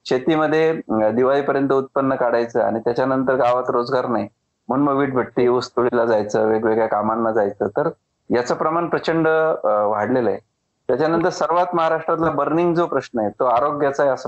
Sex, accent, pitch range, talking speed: male, native, 115-155 Hz, 145 wpm